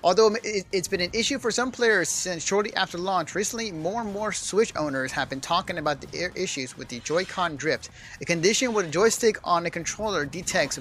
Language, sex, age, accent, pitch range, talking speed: English, male, 30-49, American, 155-220 Hz, 205 wpm